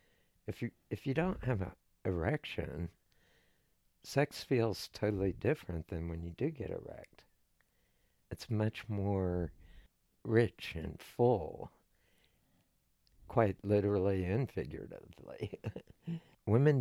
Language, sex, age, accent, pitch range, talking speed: English, male, 60-79, American, 90-115 Hz, 105 wpm